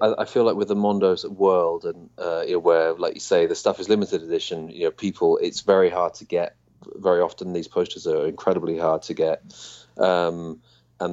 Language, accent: English, British